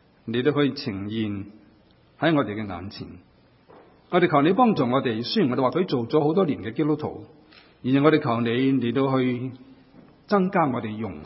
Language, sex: Chinese, male